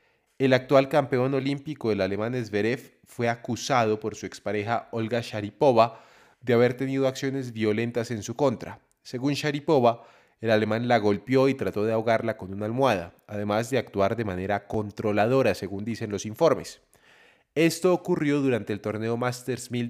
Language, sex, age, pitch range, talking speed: Spanish, male, 30-49, 110-130 Hz, 155 wpm